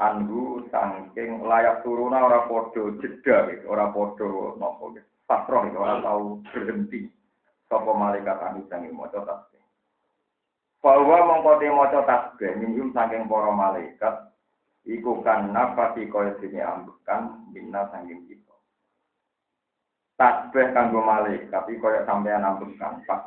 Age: 50-69